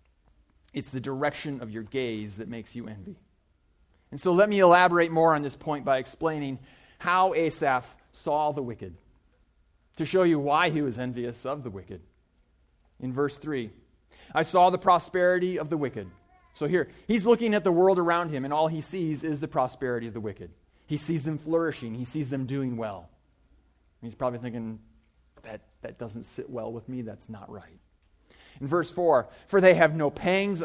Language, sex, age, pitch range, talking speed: English, male, 30-49, 105-160 Hz, 185 wpm